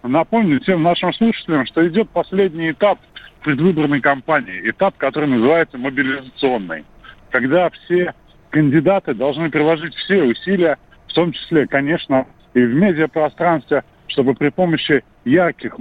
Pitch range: 135-175 Hz